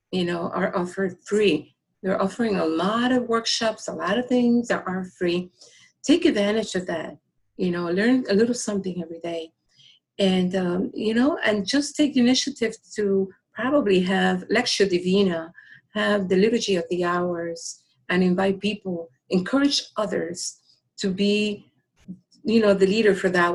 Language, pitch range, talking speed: English, 185-240 Hz, 160 wpm